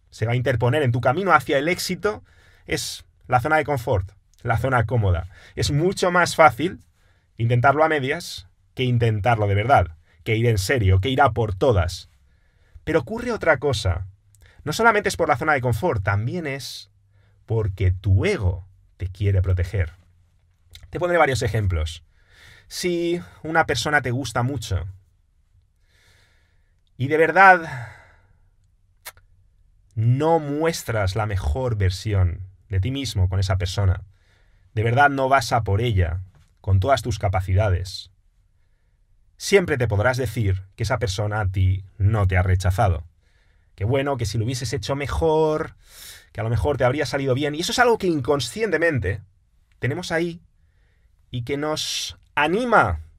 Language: English